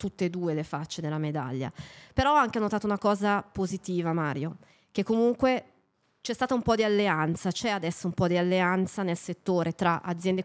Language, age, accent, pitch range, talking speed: Italian, 30-49, native, 170-195 Hz, 190 wpm